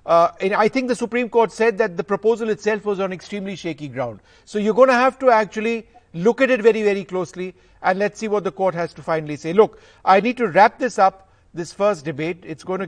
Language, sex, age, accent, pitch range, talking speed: English, male, 50-69, Indian, 165-210 Hz, 245 wpm